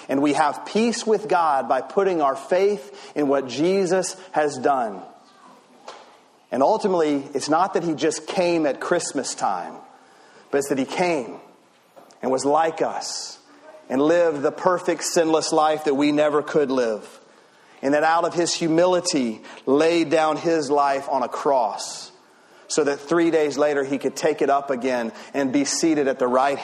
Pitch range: 140-165 Hz